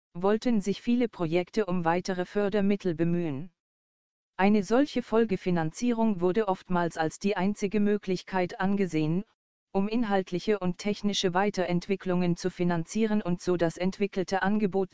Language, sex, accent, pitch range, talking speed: German, female, German, 175-205 Hz, 120 wpm